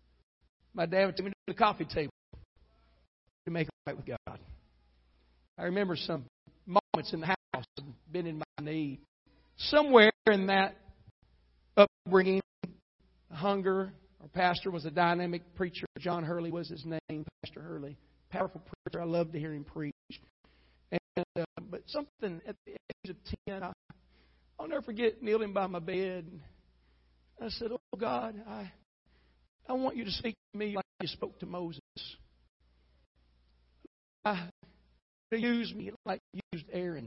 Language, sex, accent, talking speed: English, male, American, 155 wpm